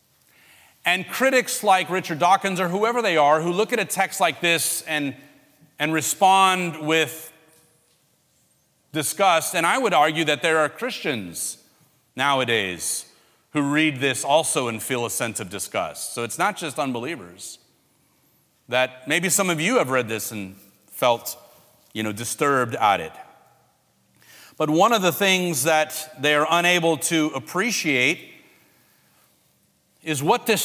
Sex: male